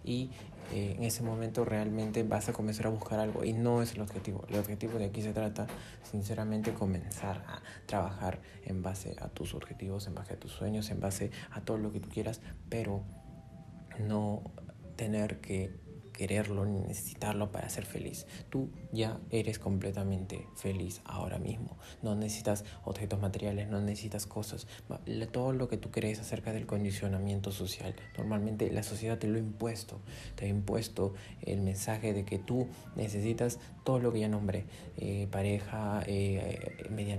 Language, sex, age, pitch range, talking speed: Spanish, male, 30-49, 100-115 Hz, 165 wpm